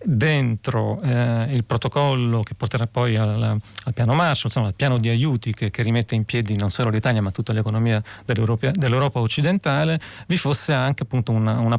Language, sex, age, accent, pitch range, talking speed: Italian, male, 40-59, native, 110-135 Hz, 185 wpm